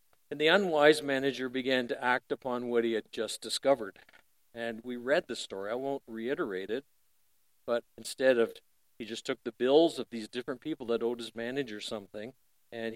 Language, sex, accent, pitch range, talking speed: English, male, American, 110-130 Hz, 185 wpm